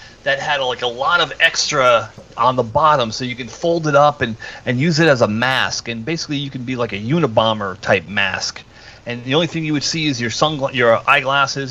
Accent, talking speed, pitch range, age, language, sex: American, 230 wpm, 115-150 Hz, 30-49, English, male